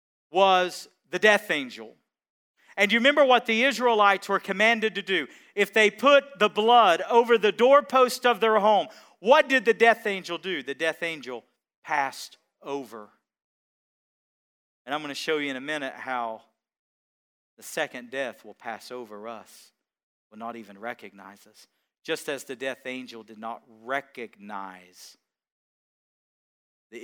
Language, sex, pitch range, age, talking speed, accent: English, male, 150-230 Hz, 40-59, 150 wpm, American